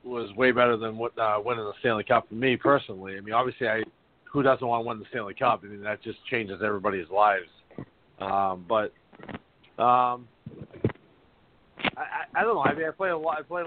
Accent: American